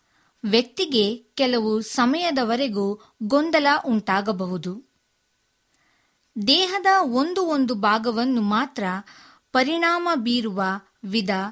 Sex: female